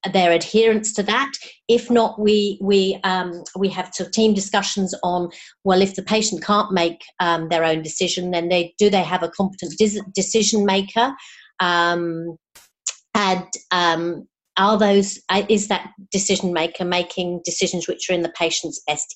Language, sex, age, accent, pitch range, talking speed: English, female, 40-59, British, 160-195 Hz, 165 wpm